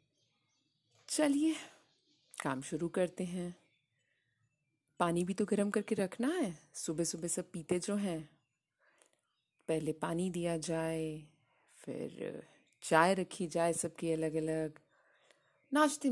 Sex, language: female, Hindi